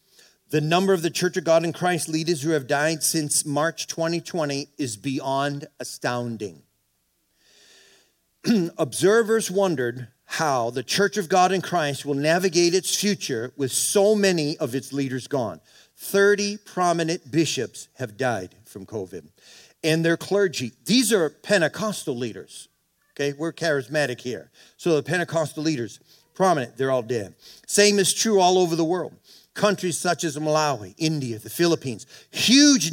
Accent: American